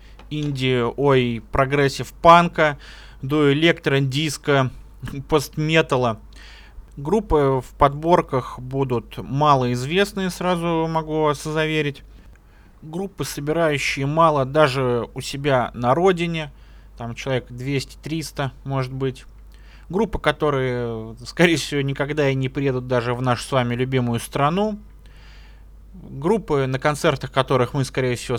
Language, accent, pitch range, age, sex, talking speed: Russian, native, 125-155 Hz, 20-39, male, 110 wpm